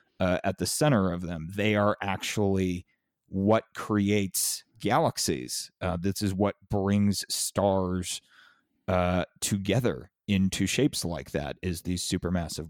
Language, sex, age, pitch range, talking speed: English, male, 30-49, 90-105 Hz, 130 wpm